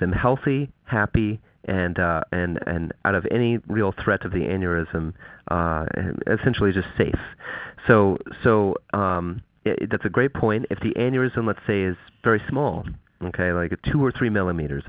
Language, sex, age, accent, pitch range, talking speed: English, male, 30-49, American, 90-105 Hz, 170 wpm